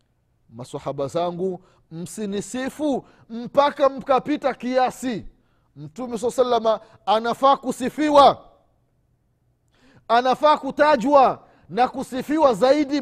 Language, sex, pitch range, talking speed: Swahili, male, 200-270 Hz, 70 wpm